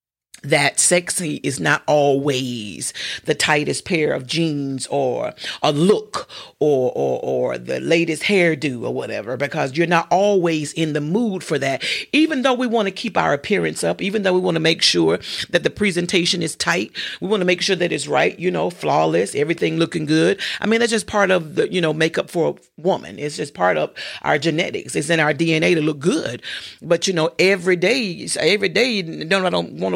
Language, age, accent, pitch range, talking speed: English, 40-59, American, 160-225 Hz, 205 wpm